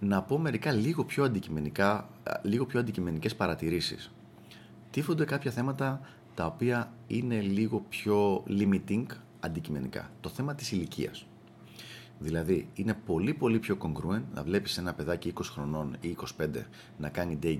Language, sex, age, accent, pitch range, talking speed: Greek, male, 30-49, native, 80-115 Hz, 140 wpm